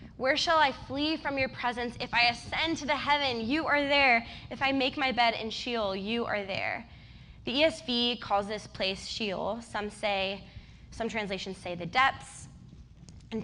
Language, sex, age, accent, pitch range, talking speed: English, female, 20-39, American, 205-255 Hz, 180 wpm